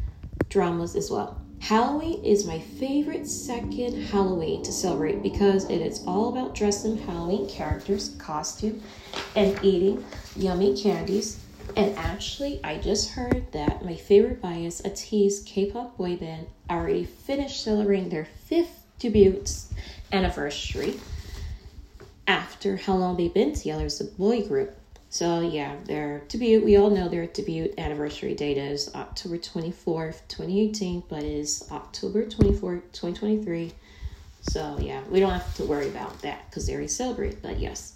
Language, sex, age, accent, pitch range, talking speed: English, female, 20-39, American, 160-220 Hz, 140 wpm